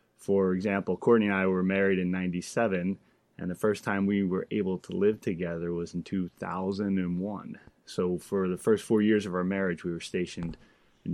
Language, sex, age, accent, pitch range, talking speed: English, male, 20-39, American, 90-100 Hz, 190 wpm